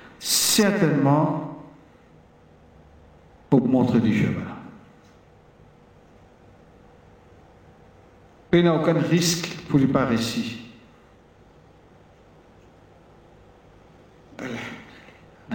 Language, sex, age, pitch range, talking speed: French, male, 60-79, 120-160 Hz, 60 wpm